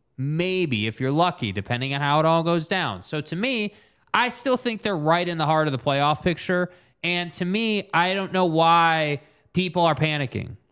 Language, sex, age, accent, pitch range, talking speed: English, male, 20-39, American, 150-190 Hz, 200 wpm